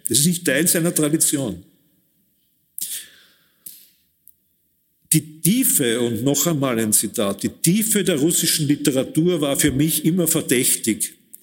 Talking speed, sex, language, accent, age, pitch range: 120 wpm, male, German, German, 50-69, 125-165 Hz